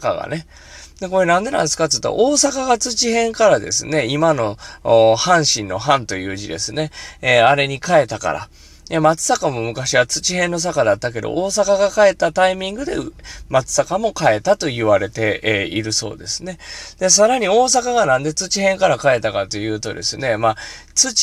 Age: 20-39